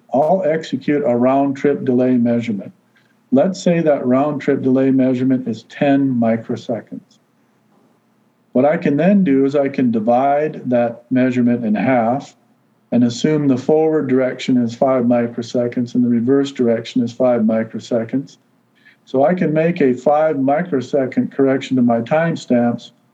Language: English